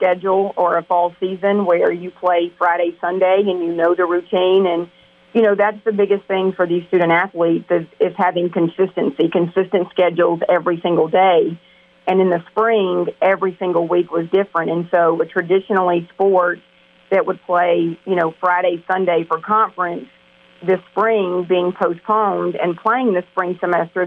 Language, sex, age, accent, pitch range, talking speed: English, female, 40-59, American, 170-190 Hz, 165 wpm